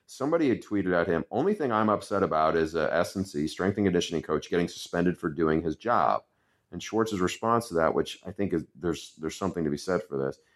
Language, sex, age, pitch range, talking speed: English, male, 40-59, 85-105 Hz, 225 wpm